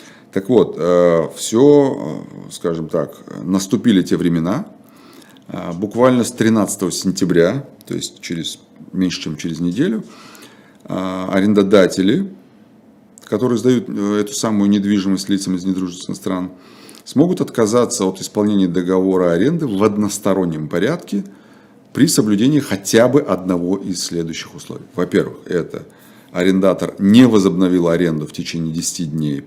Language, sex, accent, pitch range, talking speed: Russian, male, native, 85-105 Hz, 115 wpm